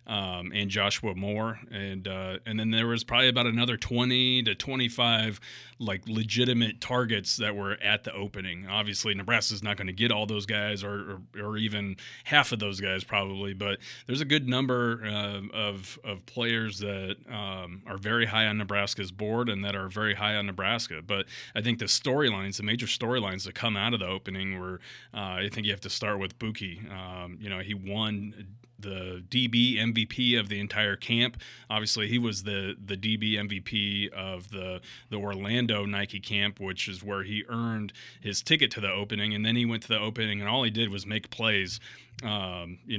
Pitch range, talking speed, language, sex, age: 100-115 Hz, 200 wpm, English, male, 30-49